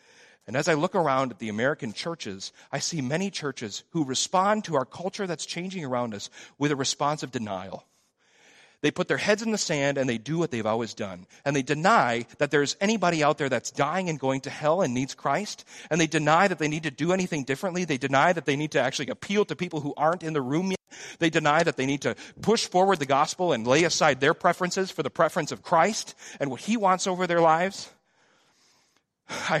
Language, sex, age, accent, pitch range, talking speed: English, male, 40-59, American, 135-180 Hz, 225 wpm